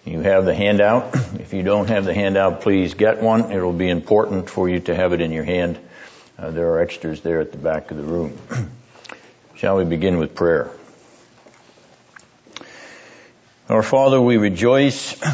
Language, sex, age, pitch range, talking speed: English, male, 60-79, 85-110 Hz, 175 wpm